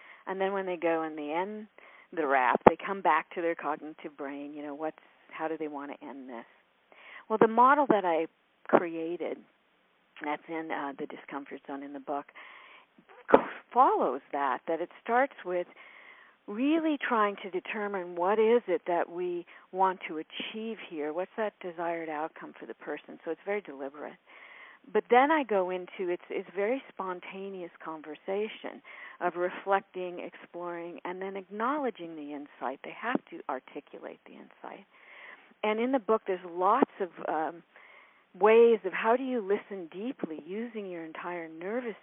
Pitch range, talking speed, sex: 160-215 Hz, 165 wpm, female